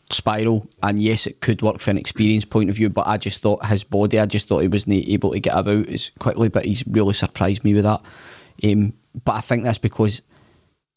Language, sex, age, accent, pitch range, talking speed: English, male, 20-39, British, 100-115 Hz, 230 wpm